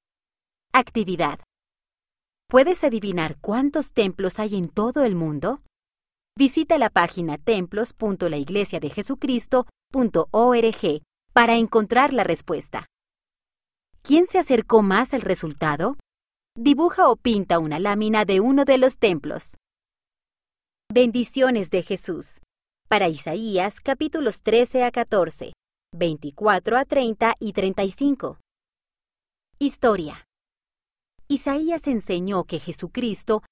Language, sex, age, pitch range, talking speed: Spanish, female, 30-49, 180-255 Hz, 95 wpm